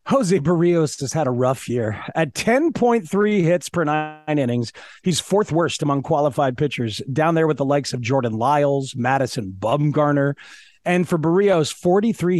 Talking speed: 160 wpm